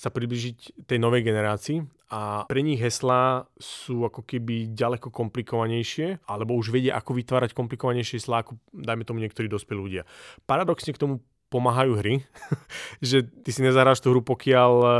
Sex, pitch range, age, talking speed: male, 110-130 Hz, 30-49, 155 wpm